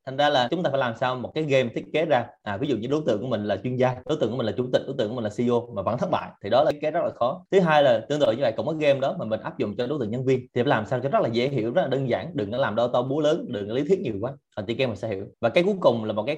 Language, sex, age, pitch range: Vietnamese, male, 20-39, 115-140 Hz